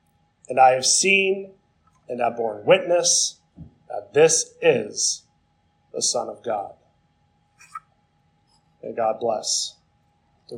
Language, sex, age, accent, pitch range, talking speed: English, male, 30-49, American, 135-185 Hz, 110 wpm